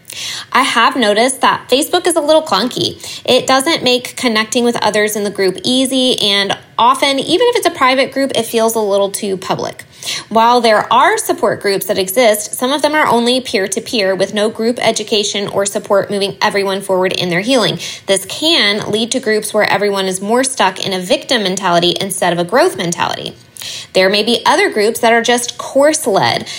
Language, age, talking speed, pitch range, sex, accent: English, 20-39, 195 wpm, 200-265 Hz, female, American